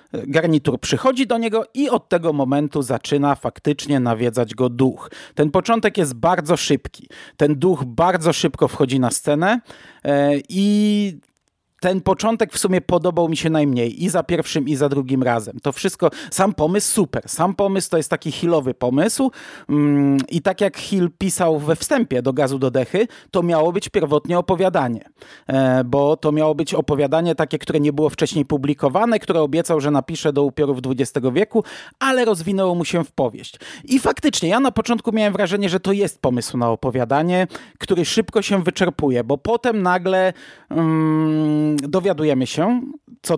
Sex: male